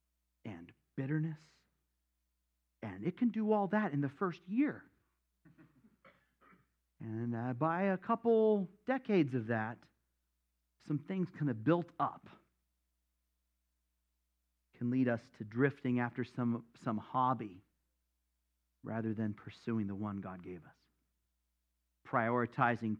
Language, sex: English, male